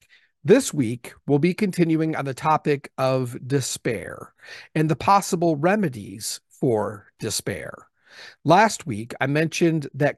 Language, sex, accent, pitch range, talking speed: English, male, American, 135-200 Hz, 125 wpm